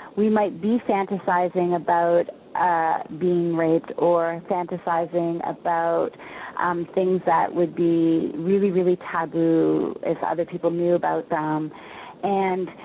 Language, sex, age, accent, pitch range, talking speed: English, female, 30-49, American, 170-200 Hz, 120 wpm